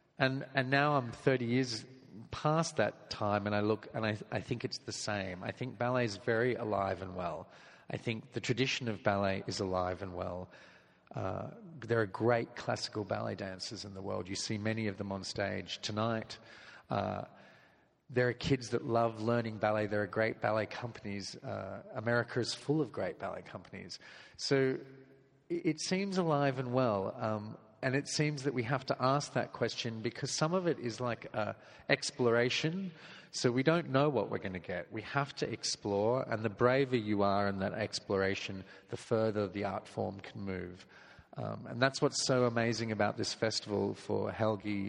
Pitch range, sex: 105-130 Hz, male